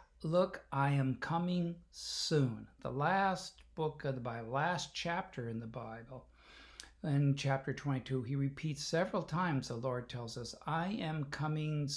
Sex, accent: male, American